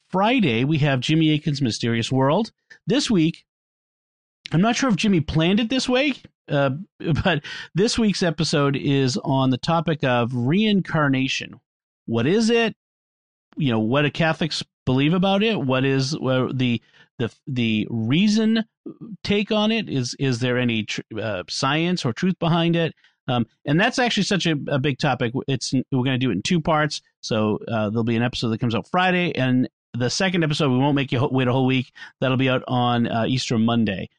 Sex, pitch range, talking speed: male, 125-175 Hz, 190 wpm